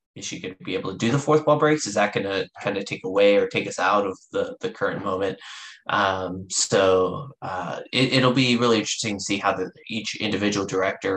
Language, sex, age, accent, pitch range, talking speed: English, male, 20-39, American, 95-120 Hz, 225 wpm